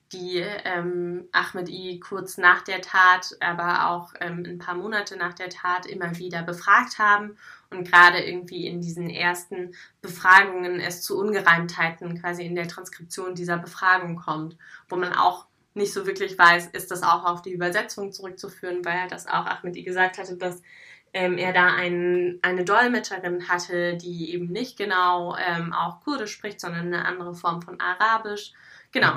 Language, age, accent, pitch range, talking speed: German, 20-39, German, 175-190 Hz, 170 wpm